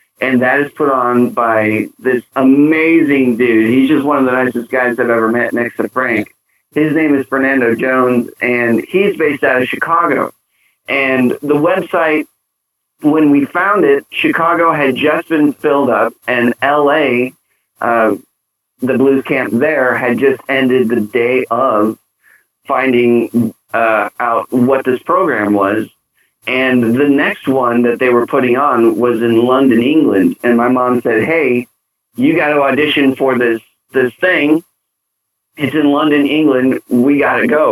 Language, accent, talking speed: English, American, 160 wpm